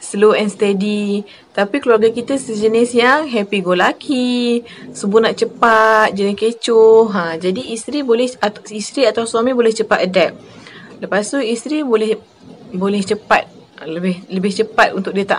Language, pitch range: Malay, 185-225 Hz